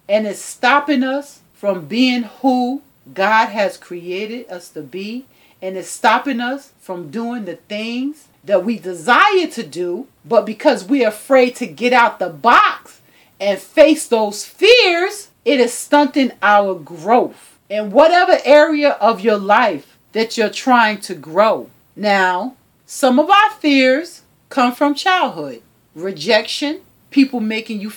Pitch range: 190-255 Hz